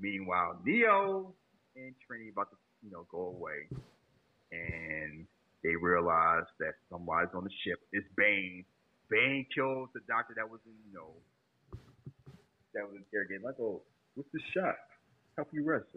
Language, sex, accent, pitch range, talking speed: English, male, American, 95-140 Hz, 150 wpm